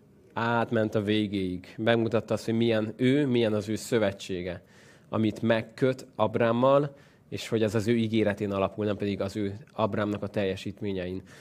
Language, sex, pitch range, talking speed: Hungarian, male, 105-130 Hz, 155 wpm